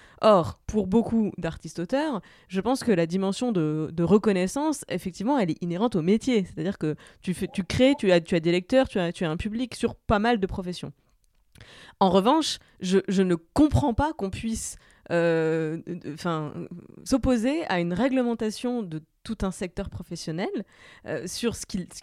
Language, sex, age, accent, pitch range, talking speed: French, female, 20-39, French, 175-240 Hz, 175 wpm